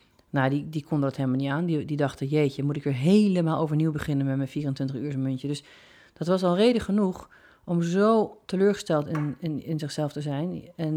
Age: 40-59